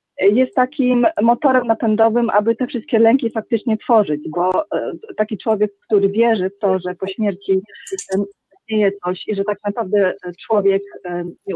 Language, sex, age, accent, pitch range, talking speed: Polish, female, 40-59, native, 190-240 Hz, 145 wpm